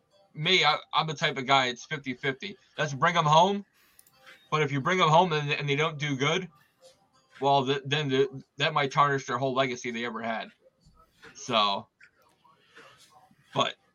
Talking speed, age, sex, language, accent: 170 wpm, 20-39, male, English, American